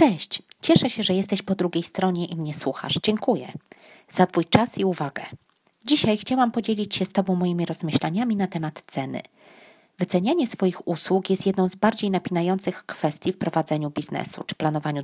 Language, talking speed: Polish, 170 wpm